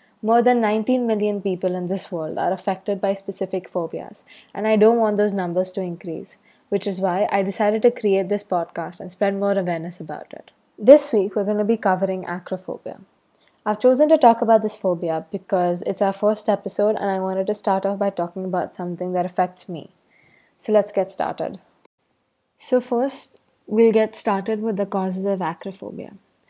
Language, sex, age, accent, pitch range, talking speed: English, female, 20-39, Indian, 185-220 Hz, 190 wpm